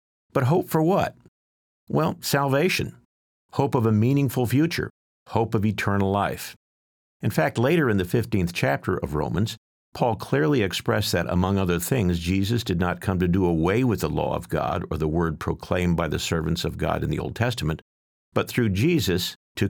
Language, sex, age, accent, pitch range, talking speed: English, male, 50-69, American, 80-105 Hz, 185 wpm